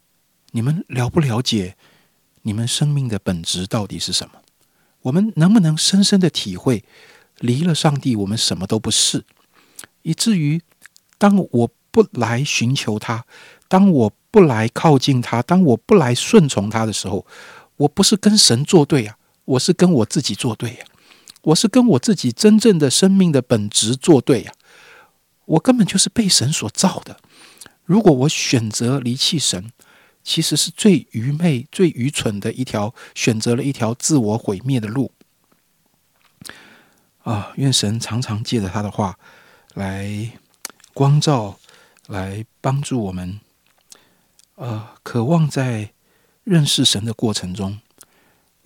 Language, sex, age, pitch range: Chinese, male, 60-79, 110-160 Hz